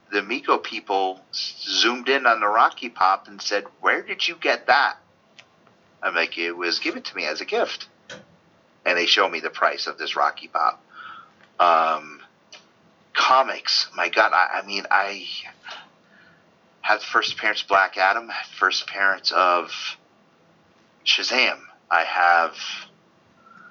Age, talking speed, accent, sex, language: 40-59, 140 wpm, American, male, English